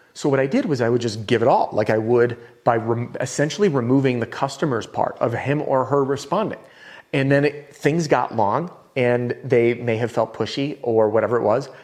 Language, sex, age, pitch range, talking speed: English, male, 30-49, 115-140 Hz, 205 wpm